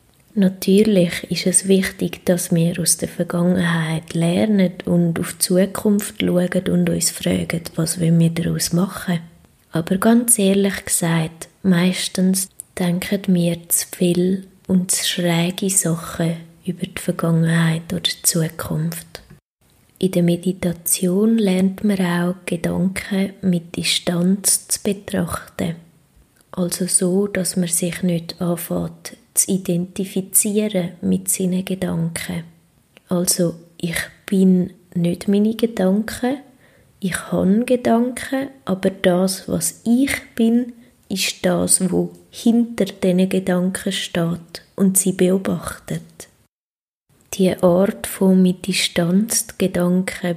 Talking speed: 110 wpm